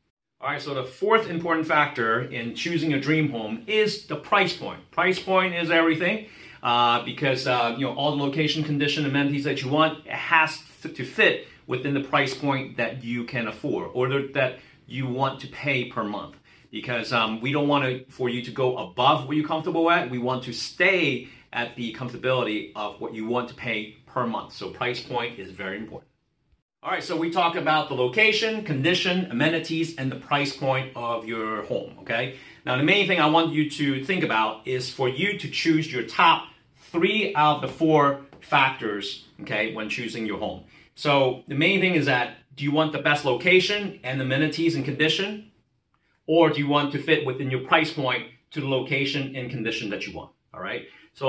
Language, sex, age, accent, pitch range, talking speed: English, male, 40-59, American, 125-160 Hz, 200 wpm